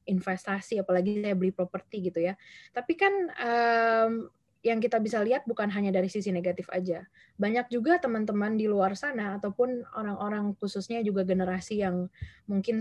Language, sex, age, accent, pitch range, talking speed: Indonesian, female, 20-39, native, 190-225 Hz, 155 wpm